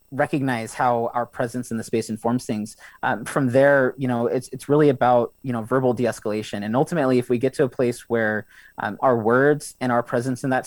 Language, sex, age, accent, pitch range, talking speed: English, male, 30-49, American, 115-130 Hz, 220 wpm